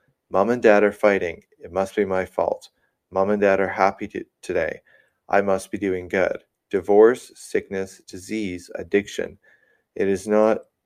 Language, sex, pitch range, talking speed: English, male, 90-105 Hz, 160 wpm